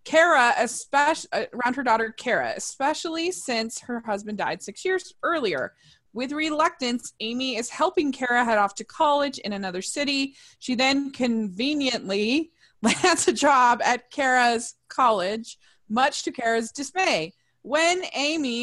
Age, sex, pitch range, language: 20-39, female, 200-270 Hz, English